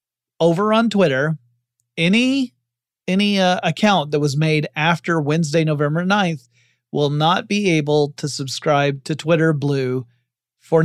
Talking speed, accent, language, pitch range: 135 wpm, American, English, 130-165 Hz